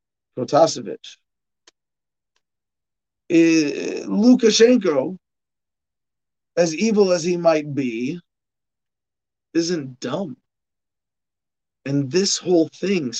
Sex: male